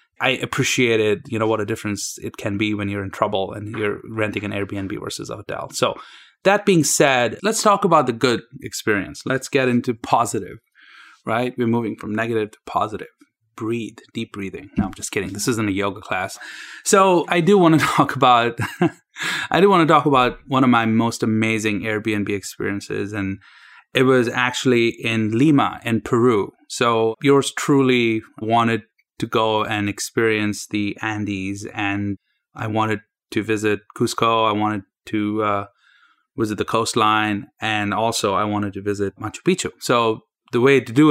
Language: English